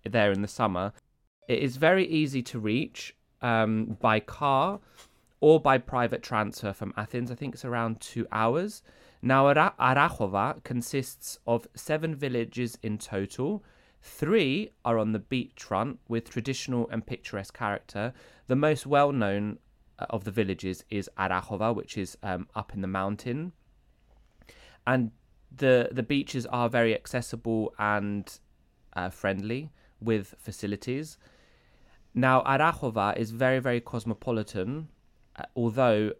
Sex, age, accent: male, 20-39, British